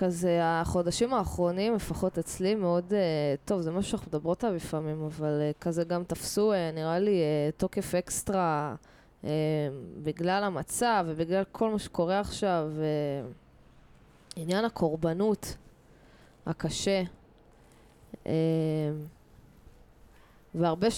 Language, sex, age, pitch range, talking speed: Hebrew, female, 20-39, 155-195 Hz, 110 wpm